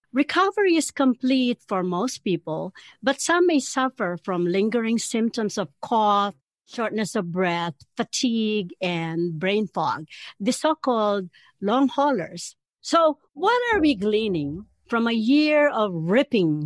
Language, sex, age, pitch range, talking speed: English, female, 60-79, 185-275 Hz, 130 wpm